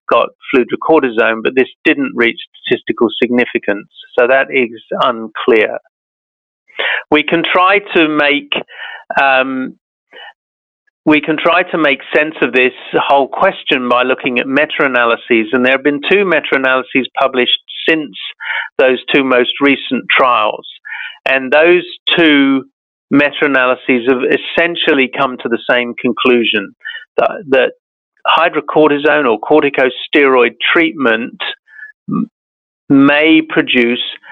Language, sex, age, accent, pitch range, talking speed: English, male, 50-69, British, 130-185 Hz, 110 wpm